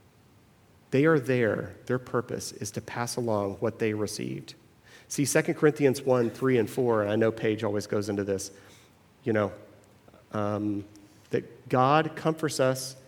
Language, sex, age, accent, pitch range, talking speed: English, male, 40-59, American, 105-130 Hz, 155 wpm